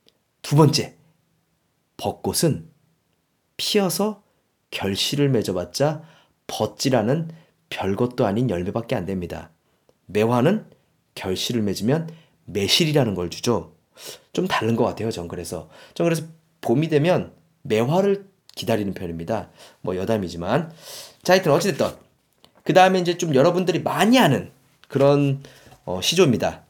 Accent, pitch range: native, 110-165 Hz